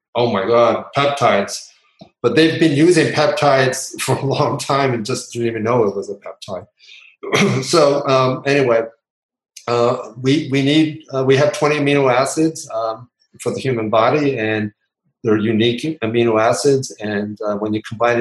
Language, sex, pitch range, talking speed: English, male, 115-135 Hz, 170 wpm